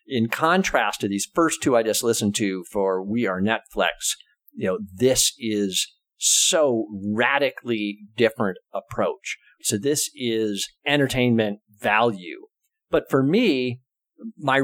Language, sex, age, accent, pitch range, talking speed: English, male, 50-69, American, 105-145 Hz, 125 wpm